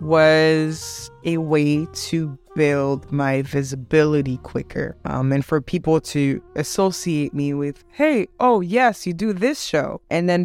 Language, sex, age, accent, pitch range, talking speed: English, female, 20-39, American, 145-180 Hz, 145 wpm